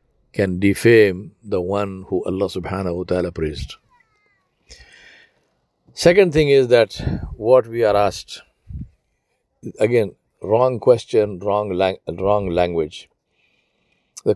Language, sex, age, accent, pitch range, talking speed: English, male, 50-69, Indian, 95-125 Hz, 110 wpm